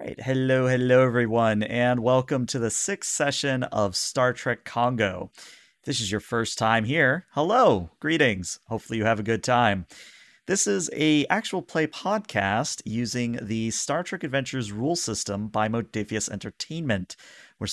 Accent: American